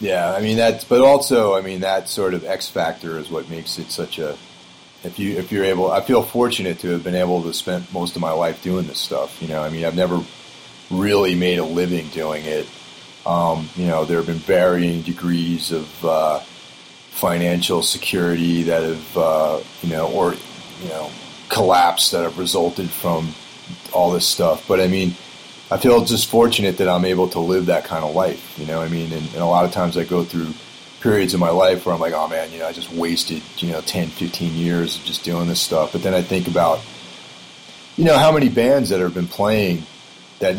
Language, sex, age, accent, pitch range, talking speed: English, male, 30-49, American, 80-90 Hz, 215 wpm